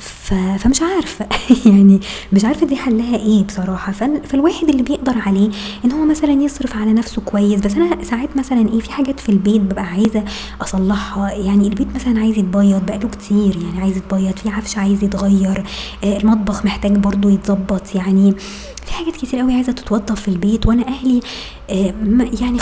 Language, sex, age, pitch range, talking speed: Arabic, male, 20-39, 200-235 Hz, 165 wpm